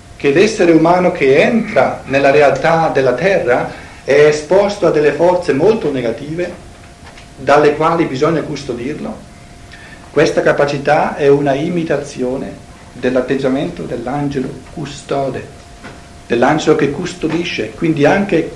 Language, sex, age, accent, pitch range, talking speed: Italian, male, 50-69, native, 125-165 Hz, 105 wpm